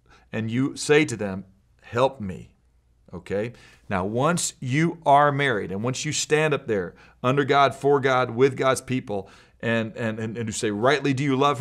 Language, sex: English, male